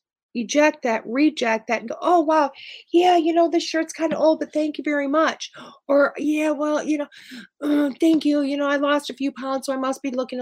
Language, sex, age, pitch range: English, female, 40-59, 225-295 Hz